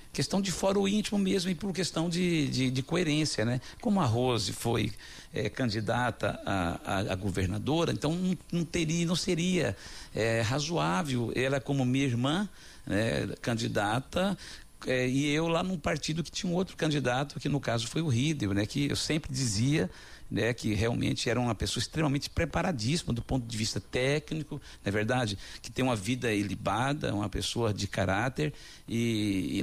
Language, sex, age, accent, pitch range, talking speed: Portuguese, male, 60-79, Brazilian, 115-150 Hz, 170 wpm